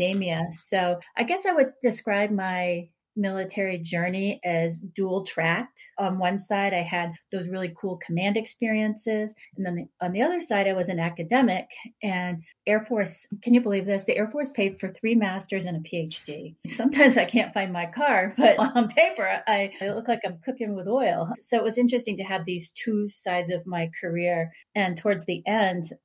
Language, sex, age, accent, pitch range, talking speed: English, female, 30-49, American, 170-200 Hz, 185 wpm